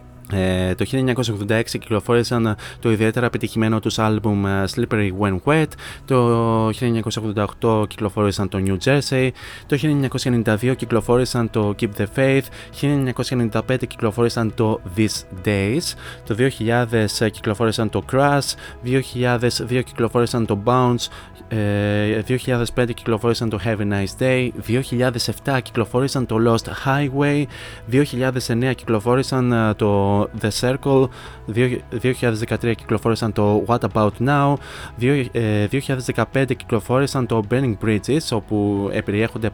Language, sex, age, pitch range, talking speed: Greek, male, 20-39, 105-125 Hz, 105 wpm